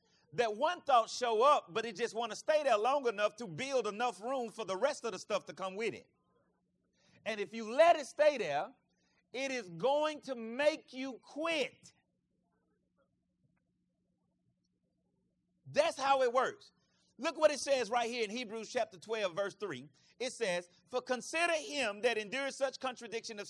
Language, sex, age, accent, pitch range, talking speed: English, male, 40-59, American, 215-285 Hz, 175 wpm